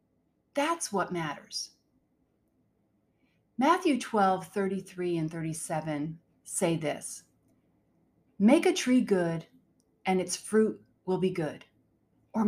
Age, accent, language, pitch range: 40-59, American, English, 170-235 Hz